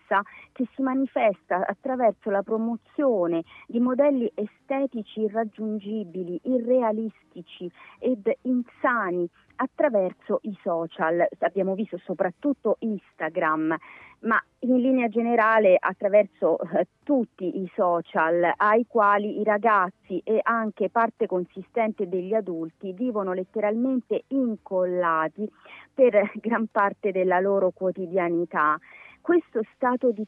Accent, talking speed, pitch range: native, 100 wpm, 185-245 Hz